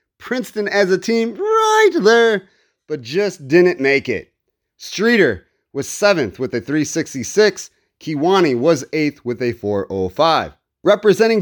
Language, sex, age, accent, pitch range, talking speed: English, male, 30-49, American, 145-205 Hz, 125 wpm